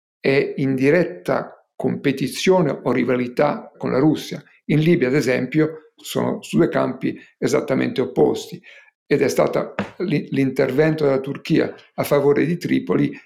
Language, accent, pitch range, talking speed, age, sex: Italian, native, 135-165 Hz, 130 wpm, 50-69, male